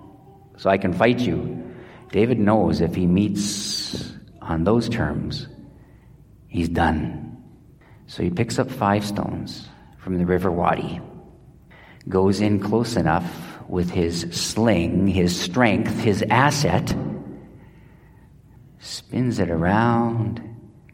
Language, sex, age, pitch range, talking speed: English, male, 50-69, 90-120 Hz, 110 wpm